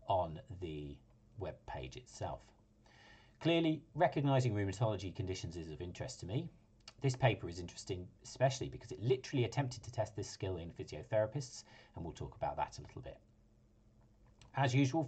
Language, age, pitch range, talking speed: English, 40-59, 105-130 Hz, 155 wpm